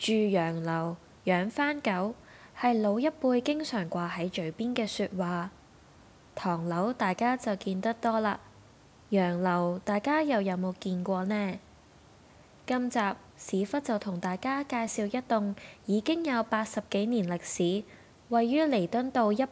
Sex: female